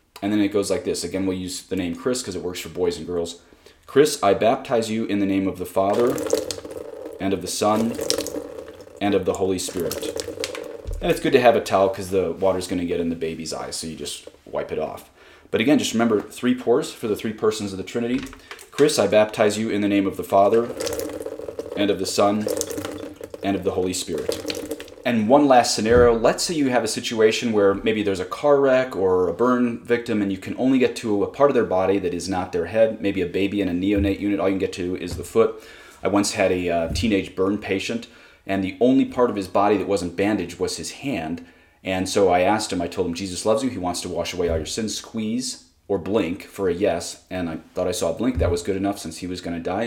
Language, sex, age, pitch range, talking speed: English, male, 30-49, 95-120 Hz, 250 wpm